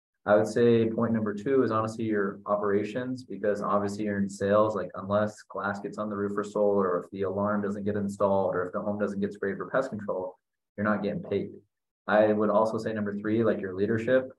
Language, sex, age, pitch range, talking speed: English, male, 20-39, 95-105 Hz, 225 wpm